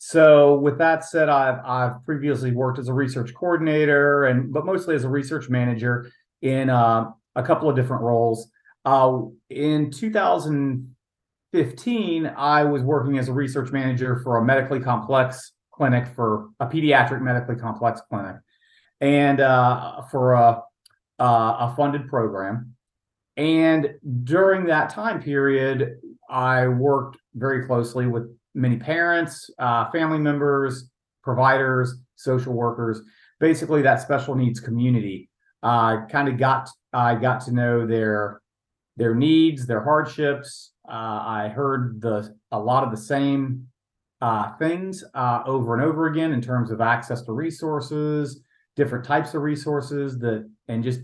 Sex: male